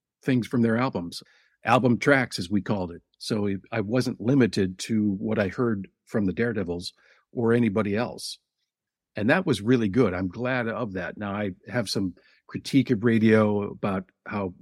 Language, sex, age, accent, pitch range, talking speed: English, male, 50-69, American, 95-115 Hz, 170 wpm